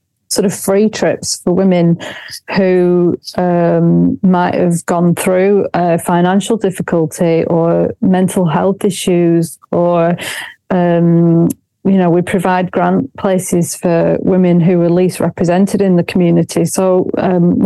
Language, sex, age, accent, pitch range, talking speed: English, female, 30-49, British, 170-190 Hz, 130 wpm